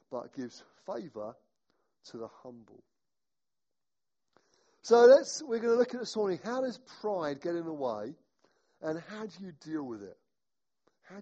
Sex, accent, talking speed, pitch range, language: male, British, 160 wpm, 185-250 Hz, English